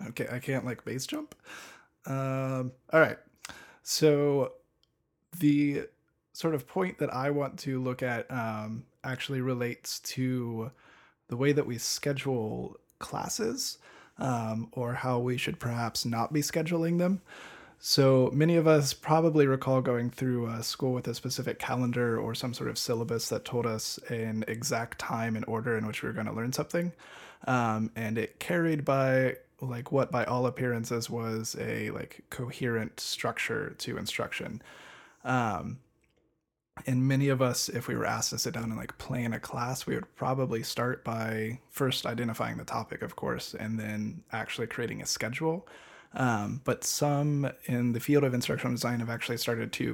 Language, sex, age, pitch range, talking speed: English, male, 20-39, 115-140 Hz, 165 wpm